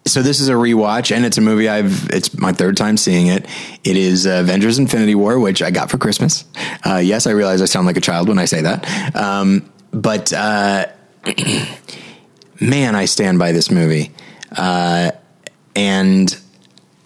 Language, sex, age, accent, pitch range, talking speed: English, male, 30-49, American, 95-125 Hz, 175 wpm